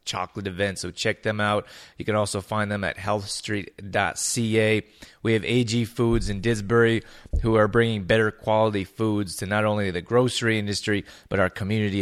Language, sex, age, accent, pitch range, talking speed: English, male, 20-39, American, 100-110 Hz, 170 wpm